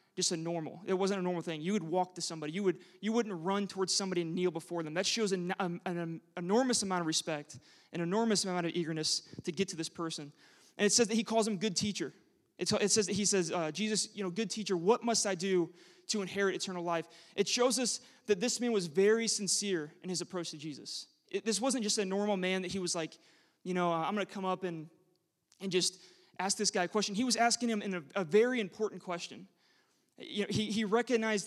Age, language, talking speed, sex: 20-39, English, 245 wpm, male